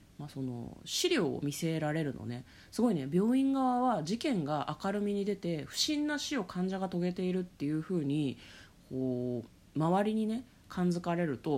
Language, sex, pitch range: Japanese, female, 135-205 Hz